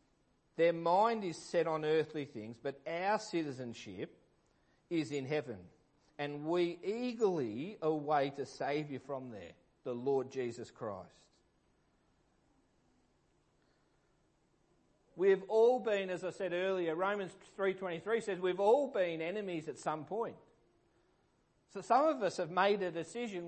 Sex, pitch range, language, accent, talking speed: male, 140-190 Hz, English, Australian, 130 wpm